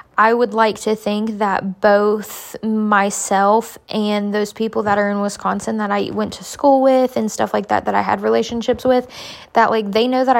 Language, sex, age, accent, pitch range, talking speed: English, female, 10-29, American, 200-225 Hz, 200 wpm